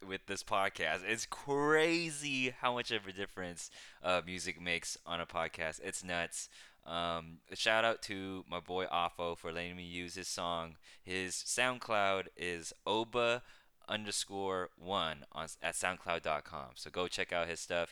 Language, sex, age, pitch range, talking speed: English, male, 20-39, 85-110 Hz, 150 wpm